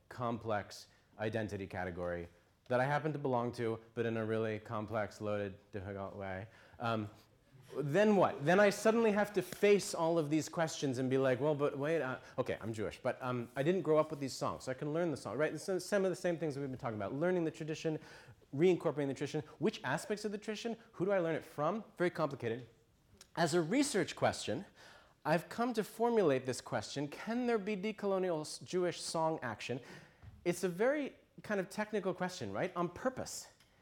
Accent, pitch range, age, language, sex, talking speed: American, 110-175 Hz, 30-49, English, male, 200 wpm